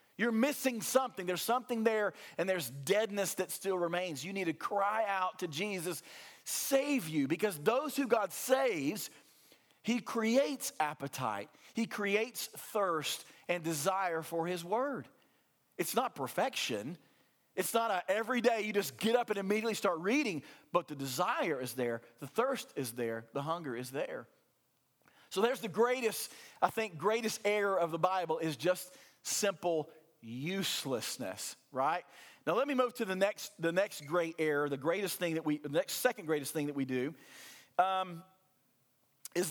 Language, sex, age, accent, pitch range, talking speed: English, male, 40-59, American, 145-205 Hz, 165 wpm